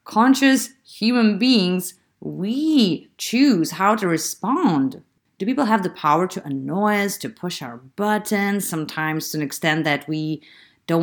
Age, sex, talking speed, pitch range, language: 30-49, female, 145 wpm, 155-220 Hz, English